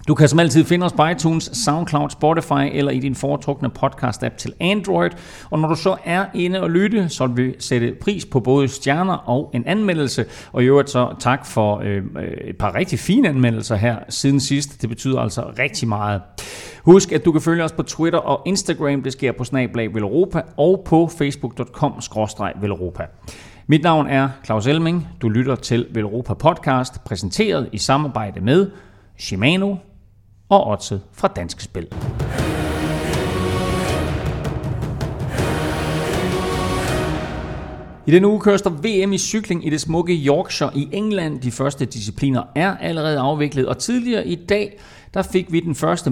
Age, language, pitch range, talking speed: 30-49, Danish, 115-165 Hz, 160 wpm